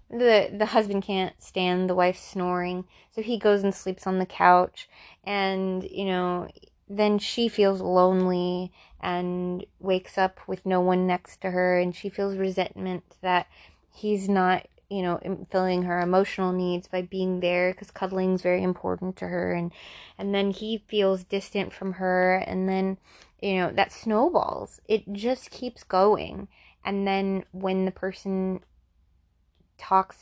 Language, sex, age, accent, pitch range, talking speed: English, female, 20-39, American, 180-195 Hz, 155 wpm